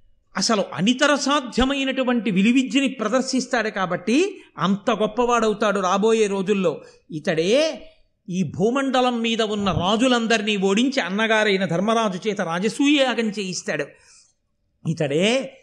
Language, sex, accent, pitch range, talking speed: Telugu, male, native, 185-260 Hz, 90 wpm